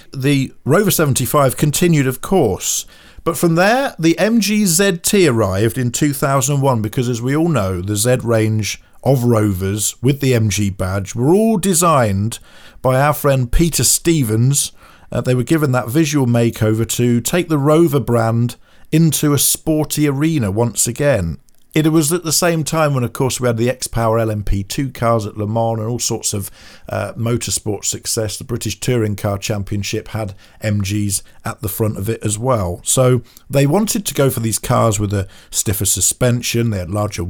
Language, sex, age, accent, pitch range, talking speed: English, male, 50-69, British, 105-145 Hz, 175 wpm